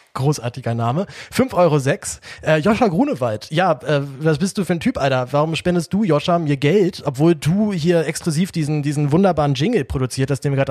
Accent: German